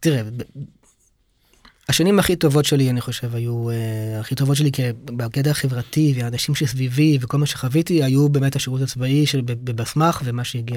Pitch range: 125-155 Hz